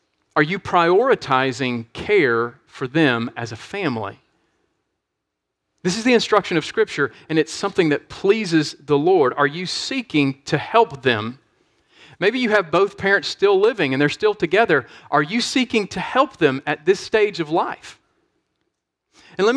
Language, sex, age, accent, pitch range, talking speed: English, male, 40-59, American, 150-220 Hz, 160 wpm